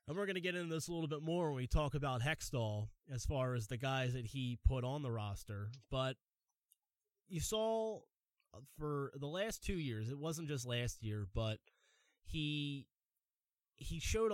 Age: 20-39